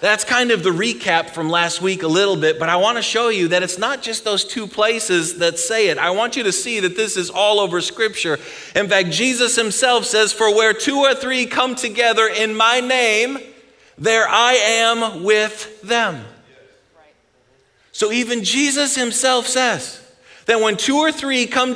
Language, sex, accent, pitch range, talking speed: English, male, American, 175-235 Hz, 190 wpm